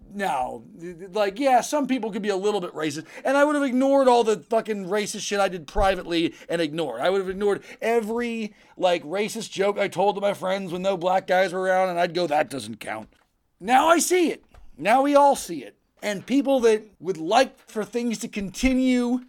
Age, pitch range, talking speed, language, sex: 40-59, 195-275 Hz, 215 wpm, English, male